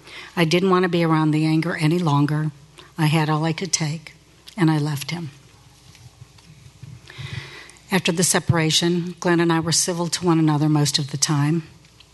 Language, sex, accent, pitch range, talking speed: English, female, American, 150-175 Hz, 175 wpm